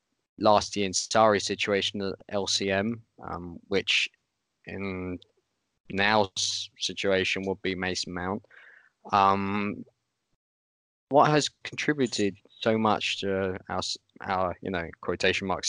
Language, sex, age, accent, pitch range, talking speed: English, male, 20-39, British, 95-115 Hz, 110 wpm